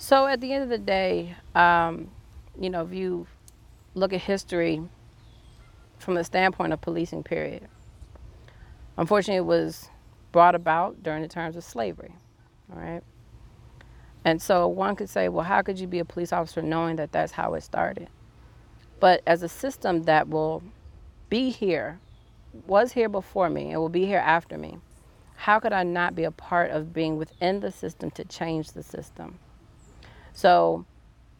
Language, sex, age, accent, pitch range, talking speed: English, female, 40-59, American, 155-180 Hz, 165 wpm